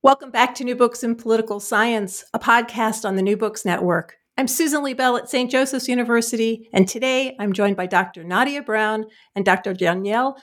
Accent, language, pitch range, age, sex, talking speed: American, English, 195-245 Hz, 50-69, female, 195 wpm